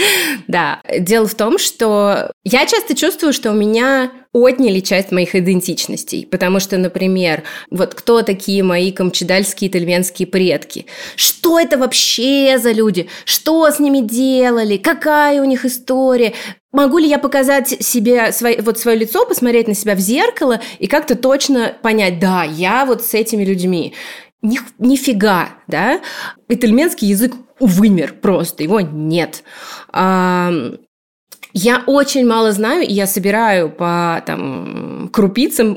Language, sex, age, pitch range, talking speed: Russian, female, 20-39, 190-250 Hz, 135 wpm